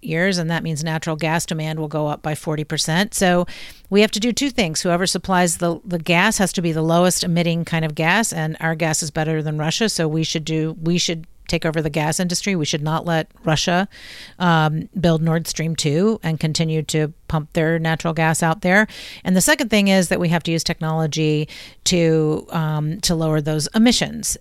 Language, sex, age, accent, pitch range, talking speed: English, female, 40-59, American, 160-190 Hz, 215 wpm